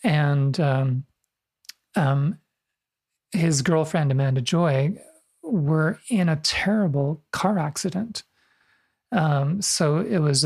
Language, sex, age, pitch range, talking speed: English, male, 40-59, 140-175 Hz, 100 wpm